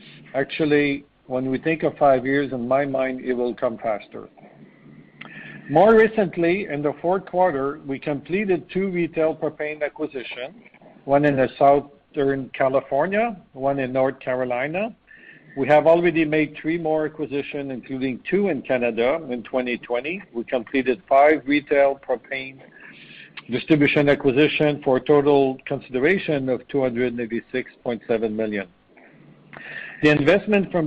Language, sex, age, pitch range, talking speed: English, male, 50-69, 130-160 Hz, 125 wpm